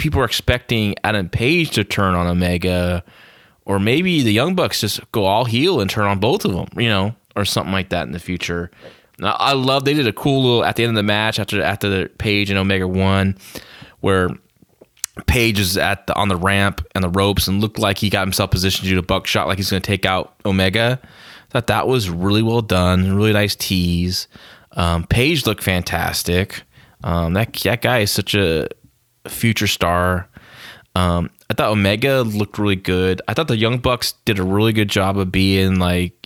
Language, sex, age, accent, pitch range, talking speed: English, male, 20-39, American, 90-115 Hz, 210 wpm